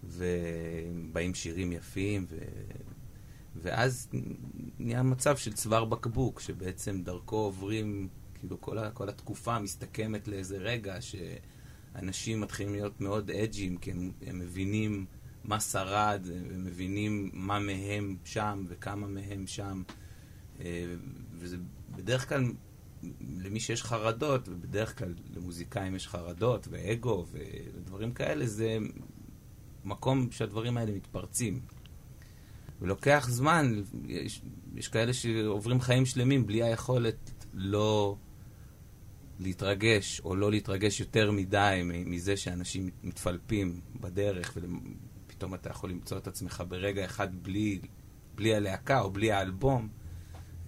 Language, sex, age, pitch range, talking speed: Hebrew, male, 30-49, 95-115 Hz, 110 wpm